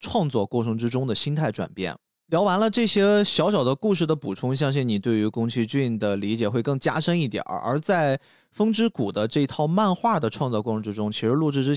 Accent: native